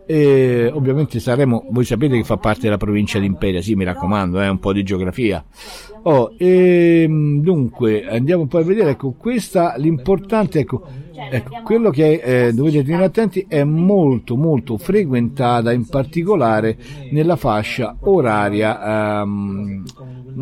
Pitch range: 115-160 Hz